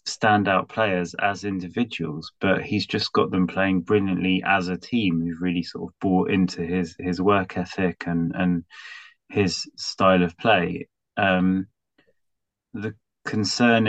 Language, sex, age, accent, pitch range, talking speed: English, male, 20-39, British, 85-100 Hz, 145 wpm